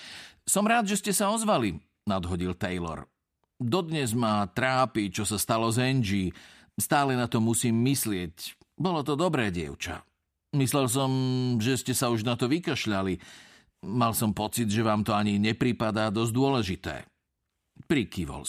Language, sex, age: Slovak, male, 50-69